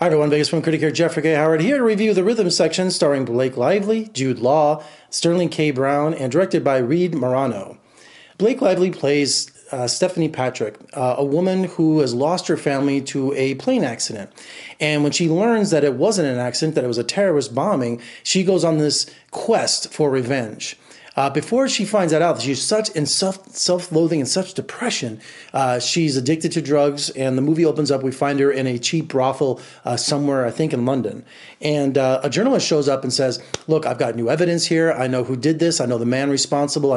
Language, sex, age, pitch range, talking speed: English, male, 30-49, 135-165 Hz, 210 wpm